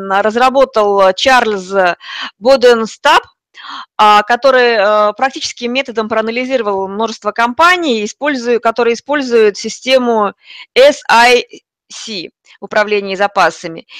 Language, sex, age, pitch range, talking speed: Russian, female, 20-39, 205-250 Hz, 70 wpm